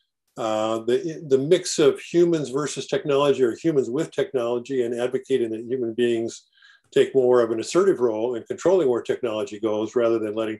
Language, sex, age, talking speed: English, male, 50-69, 175 wpm